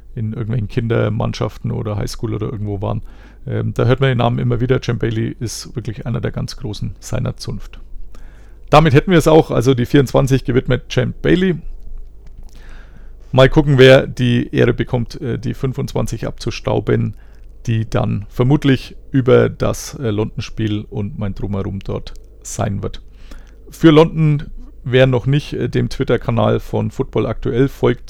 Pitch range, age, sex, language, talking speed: 105-125 Hz, 40-59, male, German, 145 wpm